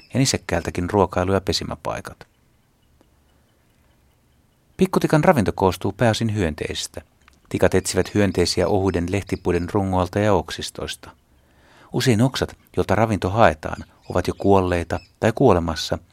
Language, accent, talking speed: Finnish, native, 100 wpm